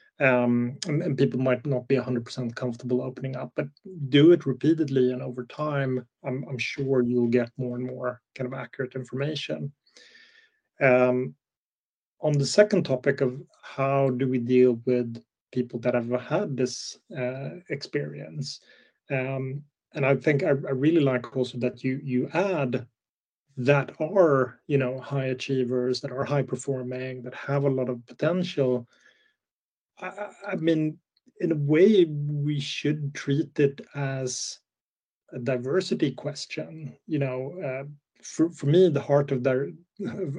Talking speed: 155 wpm